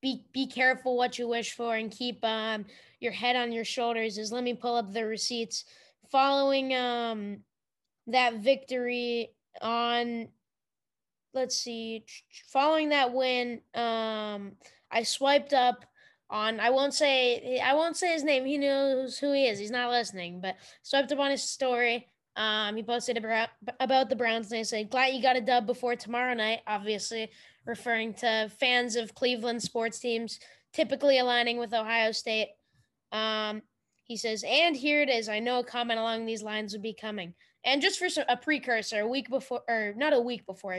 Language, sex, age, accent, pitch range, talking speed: English, female, 10-29, American, 220-260 Hz, 175 wpm